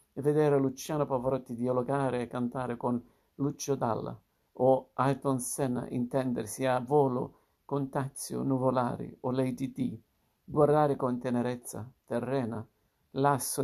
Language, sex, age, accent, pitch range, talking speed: Italian, male, 50-69, native, 125-145 Hz, 120 wpm